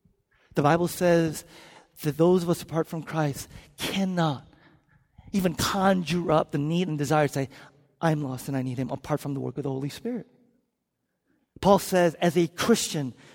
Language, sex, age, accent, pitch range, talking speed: English, male, 40-59, American, 155-255 Hz, 175 wpm